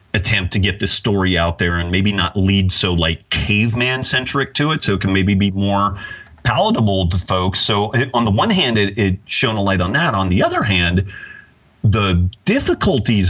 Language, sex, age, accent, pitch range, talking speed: English, male, 30-49, American, 90-115 Hz, 205 wpm